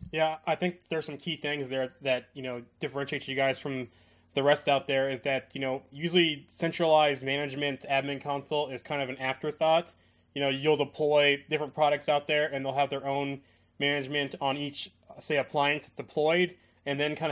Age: 20-39